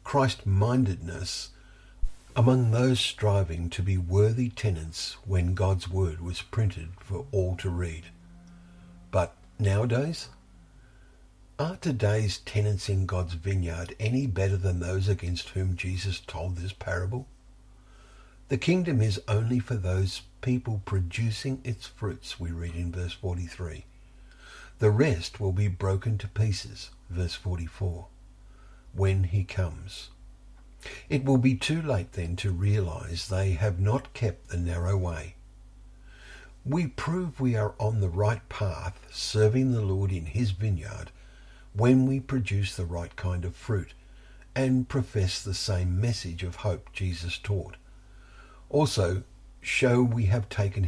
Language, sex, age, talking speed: English, male, 50-69, 135 wpm